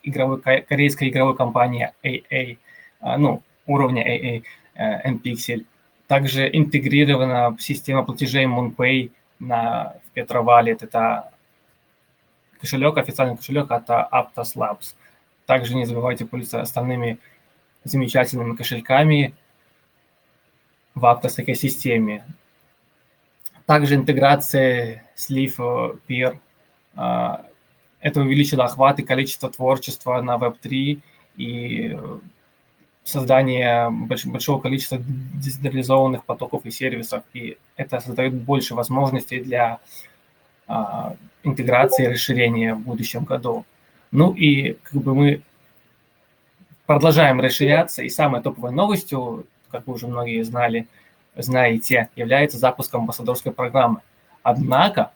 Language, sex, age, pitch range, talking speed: Russian, male, 20-39, 120-135 Hz, 100 wpm